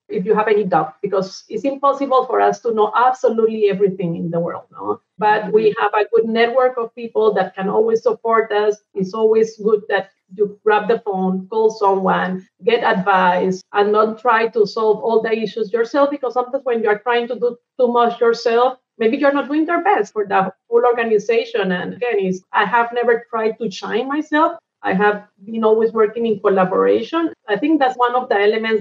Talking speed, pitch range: 200 wpm, 205-240 Hz